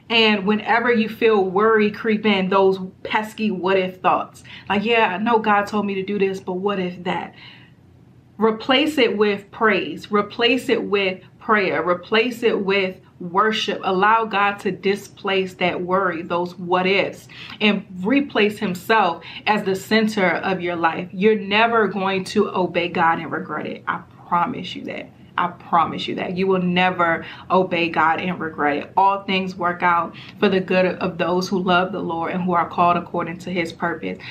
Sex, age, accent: female, 30-49, American